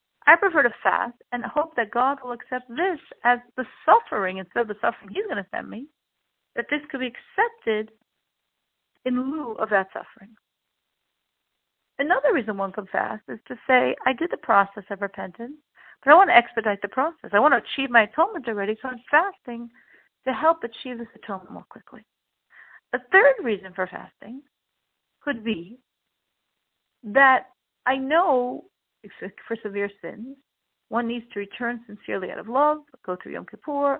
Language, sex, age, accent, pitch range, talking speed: English, female, 50-69, American, 230-300 Hz, 170 wpm